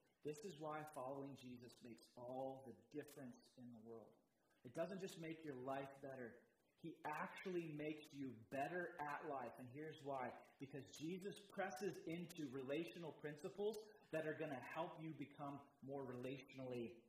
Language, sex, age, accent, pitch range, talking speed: English, male, 30-49, American, 145-205 Hz, 155 wpm